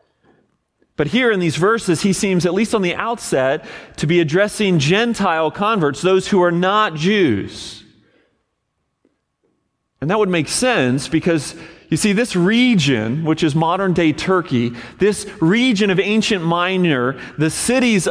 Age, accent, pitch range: 40-59, American, 145-195 Hz